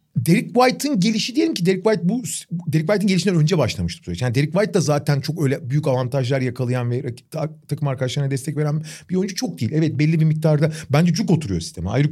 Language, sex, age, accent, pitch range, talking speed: Turkish, male, 40-59, native, 135-185 Hz, 205 wpm